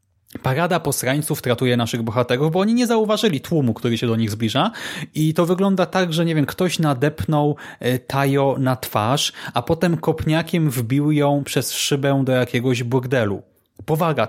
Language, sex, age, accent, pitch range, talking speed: Polish, male, 30-49, native, 125-155 Hz, 160 wpm